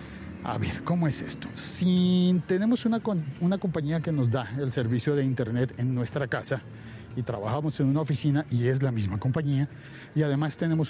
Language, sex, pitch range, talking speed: Spanish, male, 125-165 Hz, 180 wpm